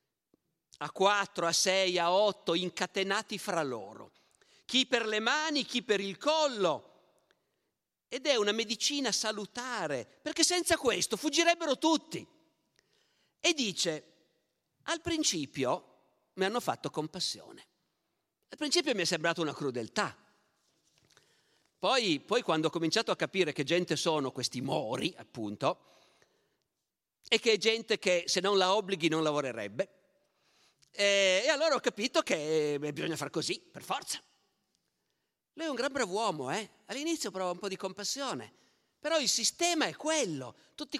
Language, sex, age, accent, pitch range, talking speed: Italian, male, 50-69, native, 175-275 Hz, 140 wpm